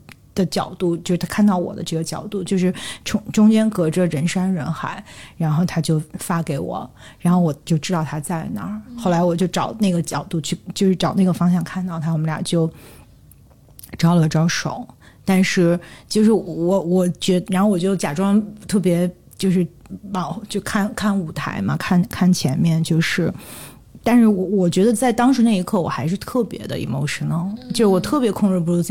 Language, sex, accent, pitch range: Chinese, female, native, 175-220 Hz